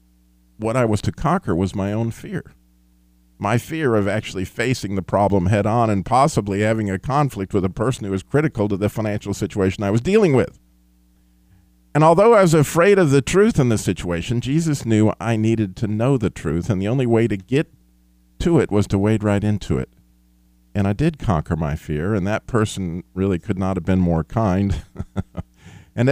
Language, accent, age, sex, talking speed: English, American, 50-69, male, 200 wpm